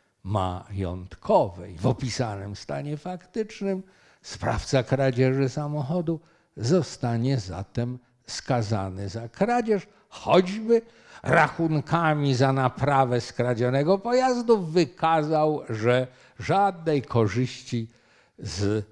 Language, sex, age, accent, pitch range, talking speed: Polish, male, 50-69, native, 110-180 Hz, 75 wpm